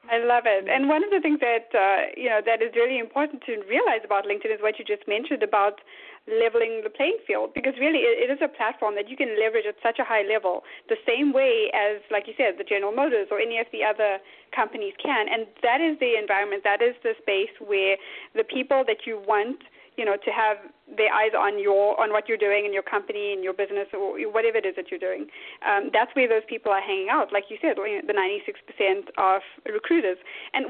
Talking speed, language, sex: 230 wpm, English, female